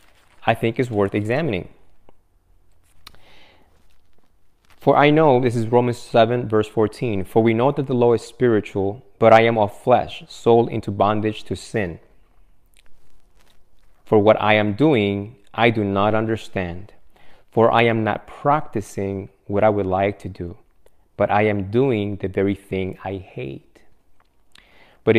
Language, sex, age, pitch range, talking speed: English, male, 30-49, 100-120 Hz, 150 wpm